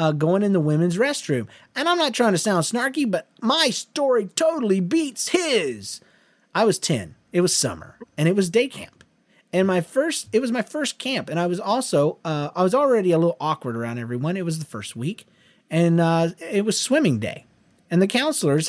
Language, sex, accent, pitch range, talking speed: English, male, American, 145-215 Hz, 210 wpm